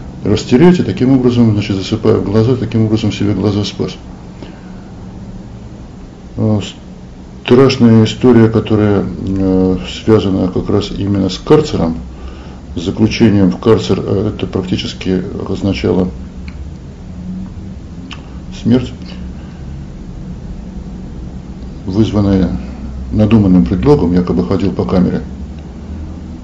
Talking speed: 85 wpm